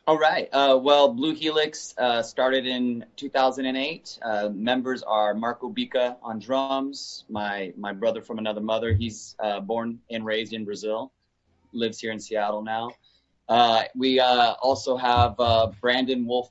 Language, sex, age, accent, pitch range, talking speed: English, male, 30-49, American, 105-125 Hz, 155 wpm